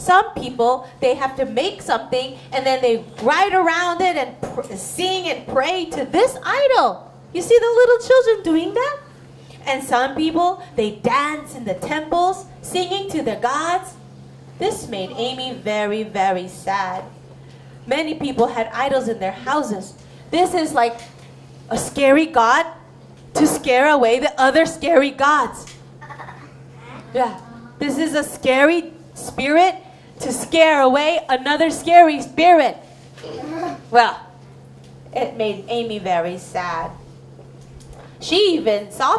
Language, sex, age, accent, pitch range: Korean, female, 30-49, American, 225-325 Hz